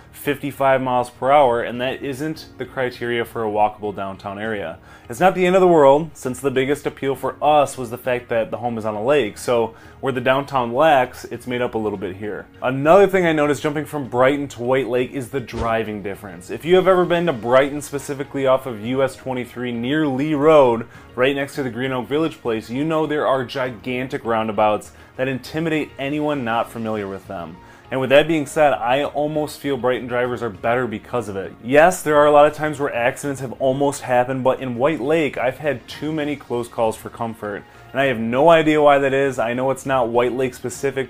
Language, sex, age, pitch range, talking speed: English, male, 20-39, 115-145 Hz, 225 wpm